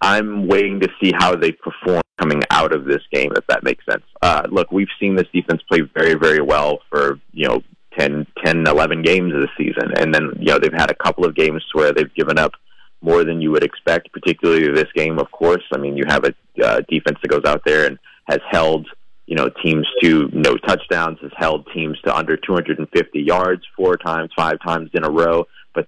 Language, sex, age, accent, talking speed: English, male, 30-49, American, 220 wpm